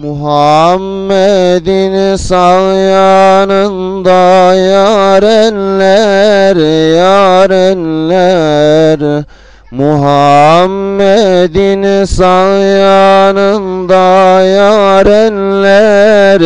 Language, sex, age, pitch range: Turkish, male, 40-59, 155-195 Hz